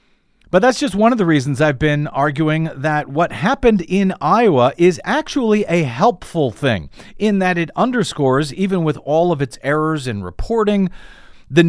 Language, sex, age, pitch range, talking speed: English, male, 40-59, 130-185 Hz, 170 wpm